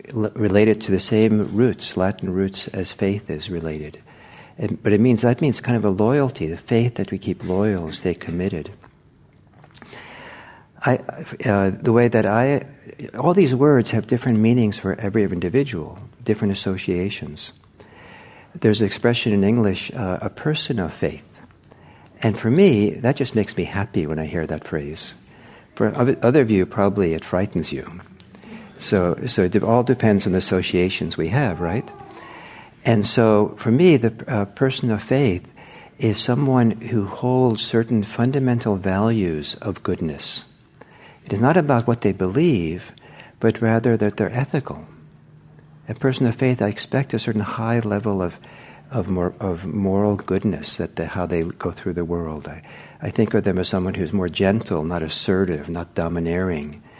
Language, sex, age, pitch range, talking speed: English, male, 60-79, 95-120 Hz, 165 wpm